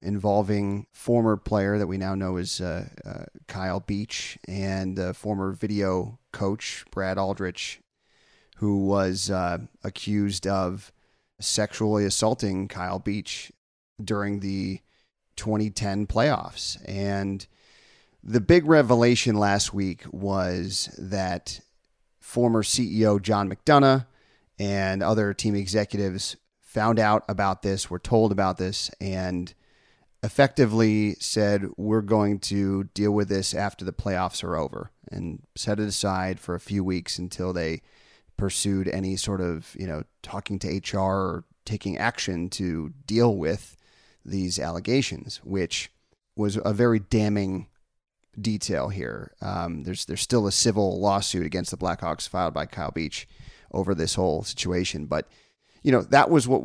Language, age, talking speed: English, 30-49, 135 wpm